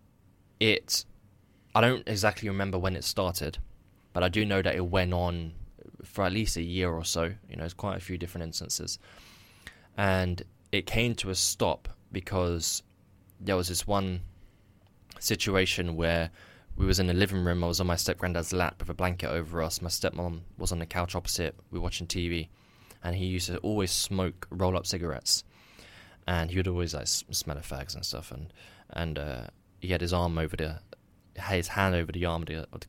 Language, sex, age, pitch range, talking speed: English, male, 20-39, 85-100 Hz, 200 wpm